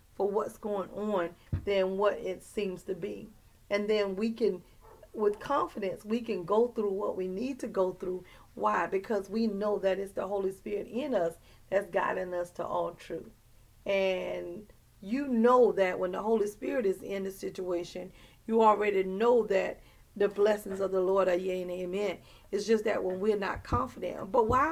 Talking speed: 185 wpm